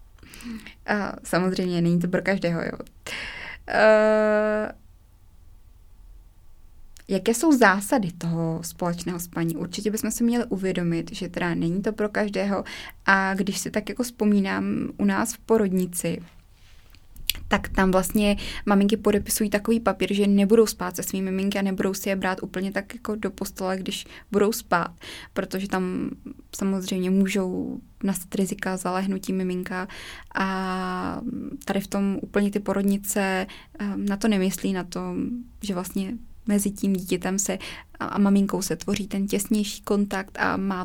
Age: 20-39